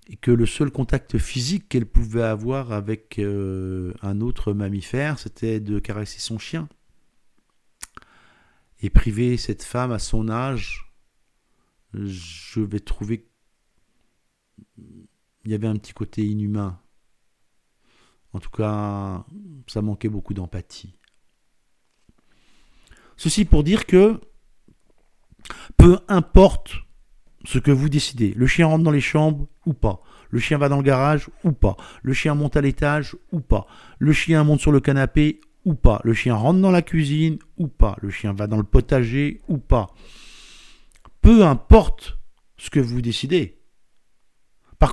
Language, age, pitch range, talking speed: French, 50-69, 105-150 Hz, 145 wpm